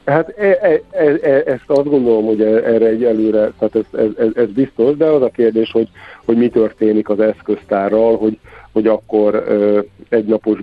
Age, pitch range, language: 50-69, 100-115 Hz, Hungarian